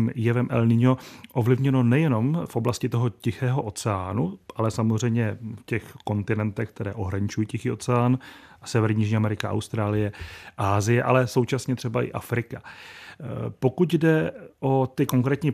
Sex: male